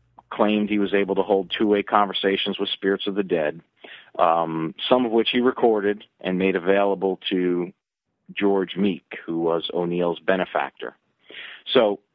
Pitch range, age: 85-105 Hz, 40-59